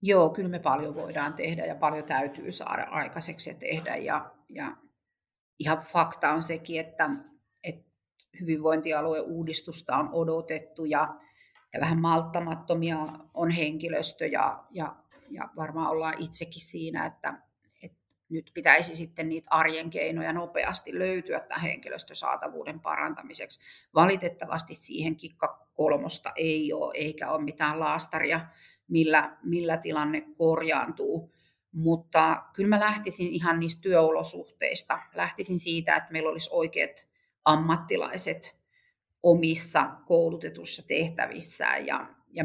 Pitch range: 155-170 Hz